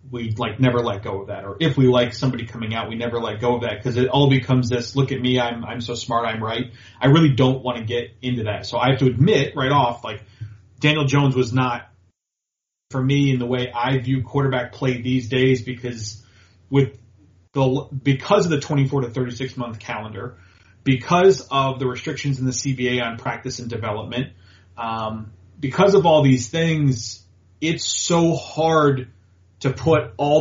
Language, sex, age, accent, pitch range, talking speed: English, male, 30-49, American, 115-135 Hz, 195 wpm